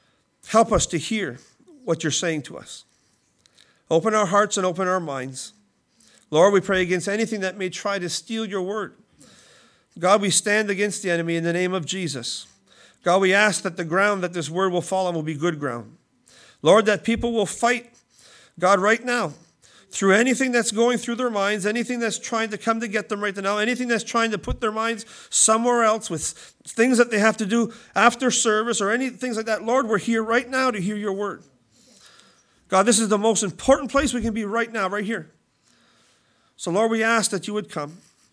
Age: 40-59